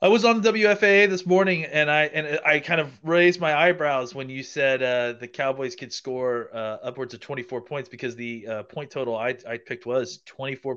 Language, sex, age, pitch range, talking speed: English, male, 30-49, 120-155 Hz, 215 wpm